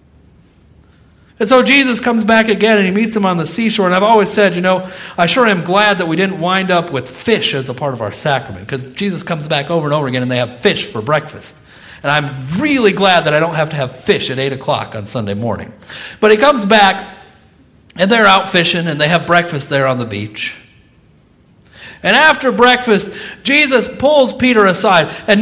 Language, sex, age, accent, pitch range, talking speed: English, male, 50-69, American, 145-225 Hz, 215 wpm